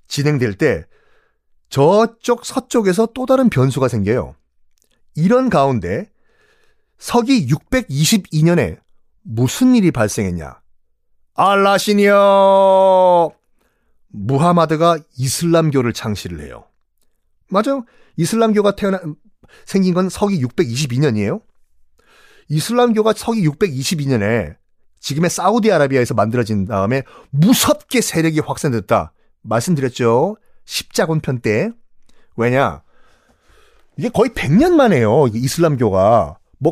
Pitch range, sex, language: 125-210 Hz, male, Korean